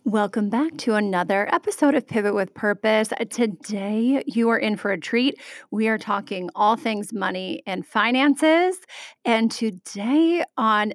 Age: 30-49